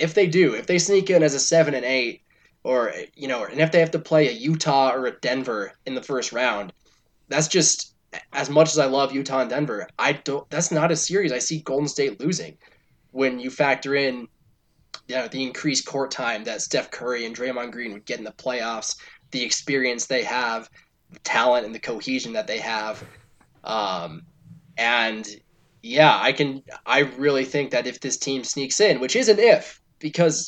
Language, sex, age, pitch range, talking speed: English, male, 20-39, 130-160 Hz, 205 wpm